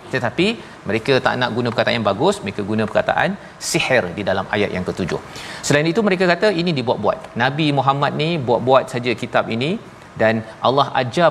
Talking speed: 175 wpm